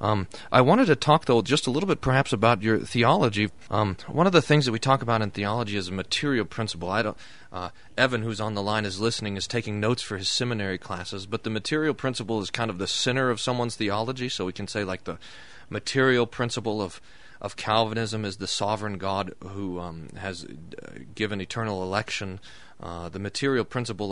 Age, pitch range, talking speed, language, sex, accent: 30-49, 100-120 Hz, 205 wpm, English, male, American